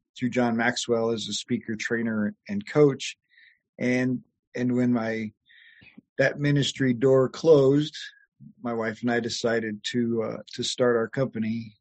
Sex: male